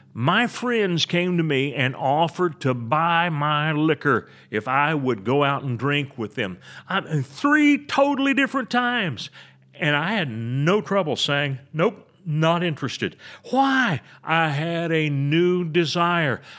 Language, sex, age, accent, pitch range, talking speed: English, male, 40-59, American, 135-175 Hz, 140 wpm